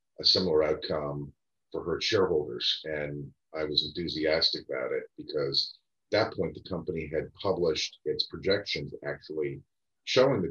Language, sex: English, male